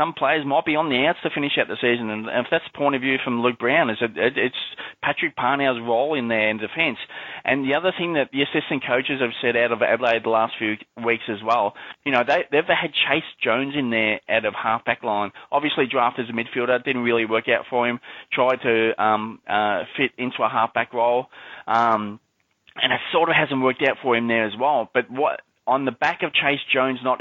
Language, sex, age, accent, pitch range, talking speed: English, male, 20-39, Australian, 115-140 Hz, 235 wpm